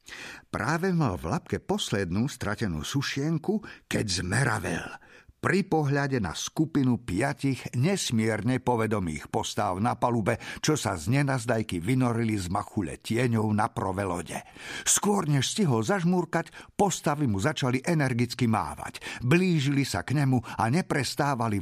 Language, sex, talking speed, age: Slovak, male, 120 wpm, 50-69